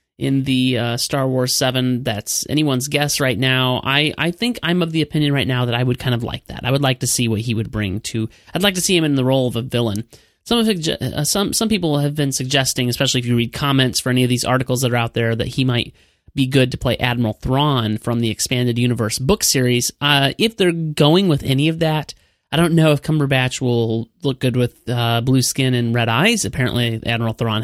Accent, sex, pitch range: American, male, 115-145 Hz